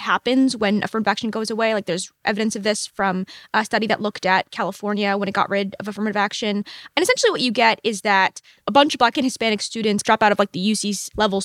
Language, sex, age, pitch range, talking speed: English, female, 20-39, 200-250 Hz, 240 wpm